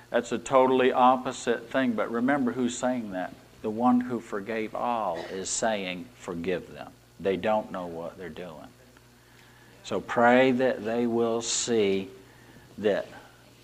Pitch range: 95-130 Hz